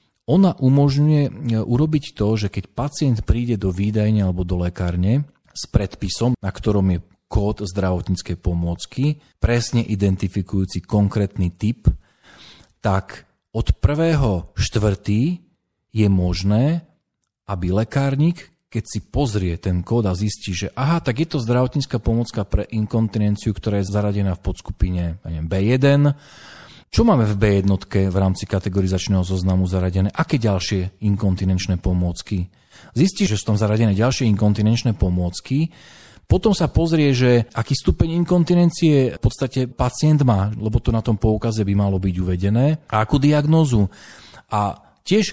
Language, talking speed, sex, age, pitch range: Slovak, 135 wpm, male, 40-59, 95-135 Hz